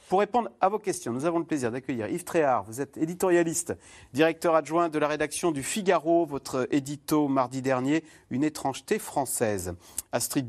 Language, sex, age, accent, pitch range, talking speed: French, male, 40-59, French, 130-170 Hz, 170 wpm